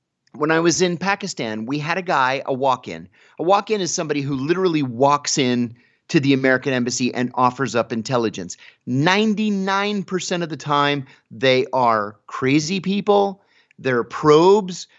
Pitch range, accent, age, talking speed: 135-175 Hz, American, 30-49, 150 wpm